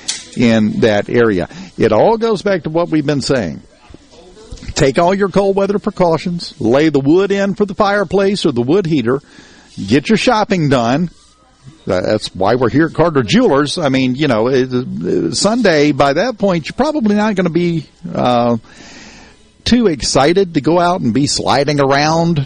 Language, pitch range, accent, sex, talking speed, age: English, 120-175 Hz, American, male, 170 wpm, 50-69